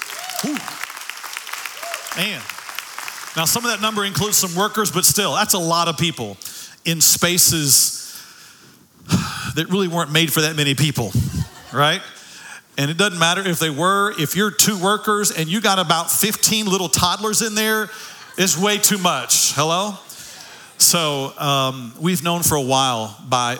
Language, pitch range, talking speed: English, 135-175 Hz, 155 wpm